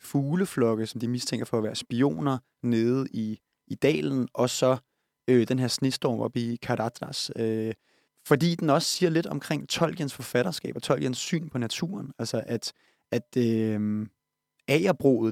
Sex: male